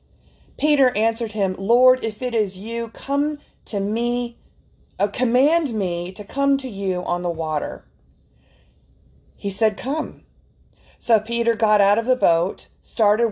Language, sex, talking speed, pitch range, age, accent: English, female, 145 wpm, 165-240 Hz, 40-59, American